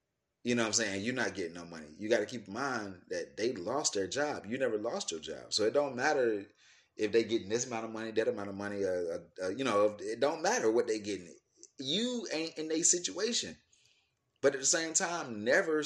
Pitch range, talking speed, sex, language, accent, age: 100-150 Hz, 240 wpm, male, English, American, 30-49